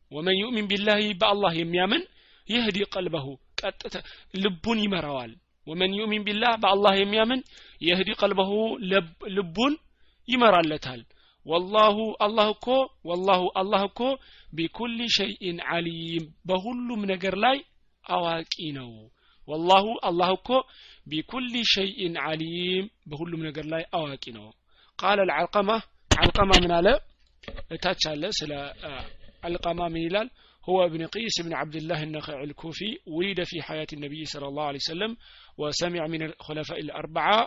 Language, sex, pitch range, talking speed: Amharic, male, 155-205 Hz, 105 wpm